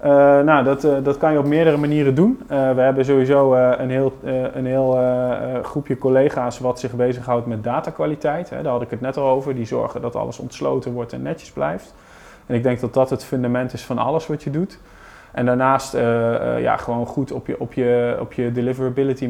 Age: 20-39